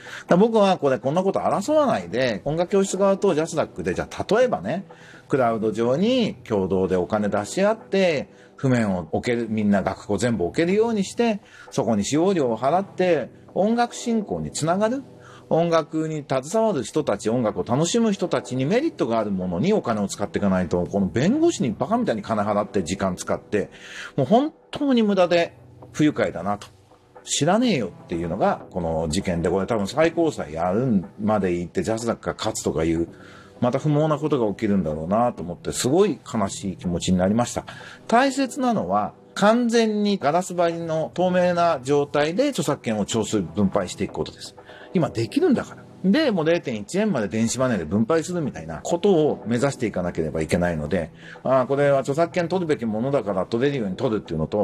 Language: Japanese